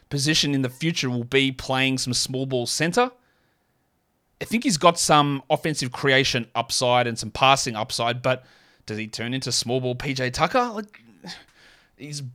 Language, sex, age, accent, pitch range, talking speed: English, male, 20-39, Australian, 125-155 Hz, 160 wpm